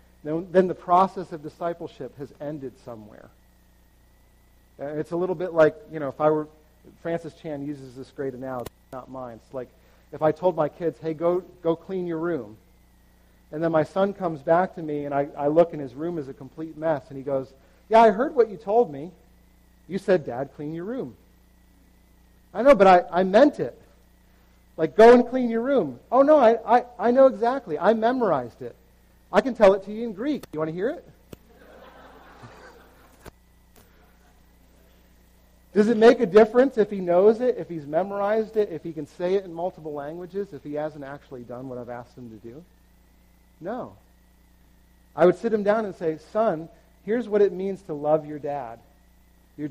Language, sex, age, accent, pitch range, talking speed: English, male, 40-59, American, 110-180 Hz, 195 wpm